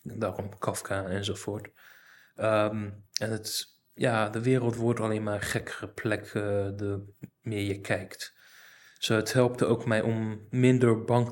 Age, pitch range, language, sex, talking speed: 20-39, 100-115 Hz, Dutch, male, 145 wpm